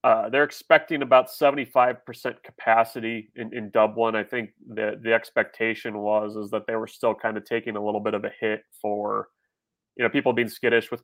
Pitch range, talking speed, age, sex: 110-120 Hz, 200 wpm, 30-49, male